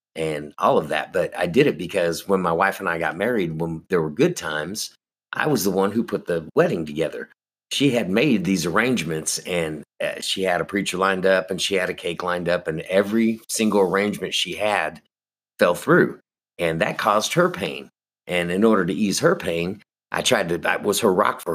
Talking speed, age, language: 215 wpm, 50-69, English